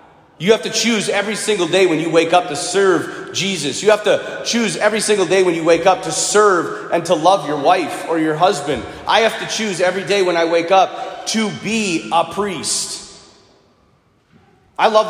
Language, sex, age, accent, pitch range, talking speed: English, male, 30-49, American, 165-210 Hz, 205 wpm